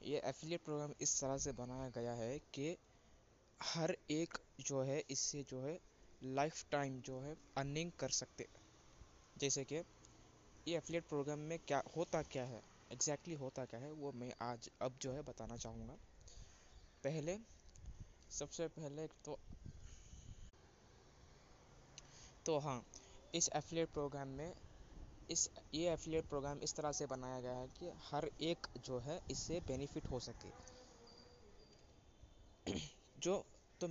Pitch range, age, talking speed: 125-155 Hz, 20-39, 135 wpm